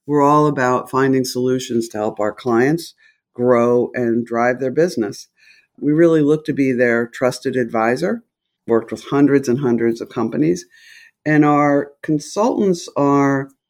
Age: 60-79